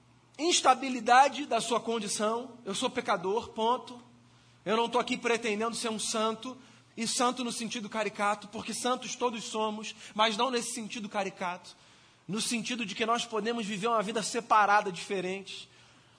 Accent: Brazilian